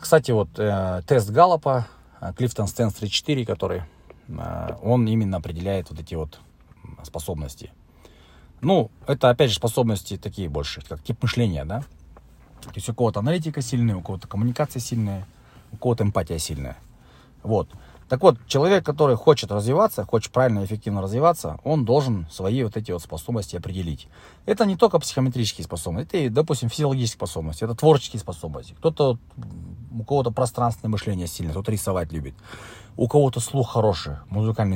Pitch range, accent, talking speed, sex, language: 90-120 Hz, native, 155 wpm, male, Russian